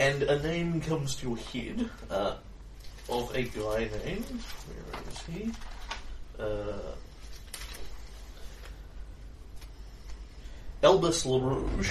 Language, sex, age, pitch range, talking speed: English, male, 30-49, 100-130 Hz, 90 wpm